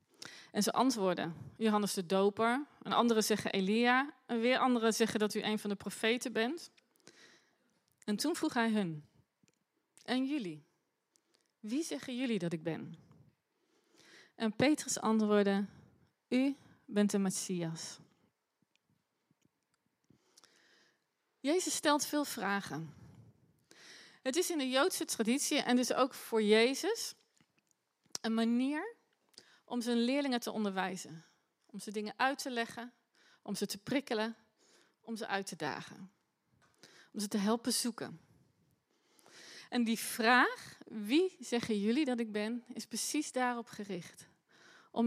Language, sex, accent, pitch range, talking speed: Dutch, female, Dutch, 205-260 Hz, 130 wpm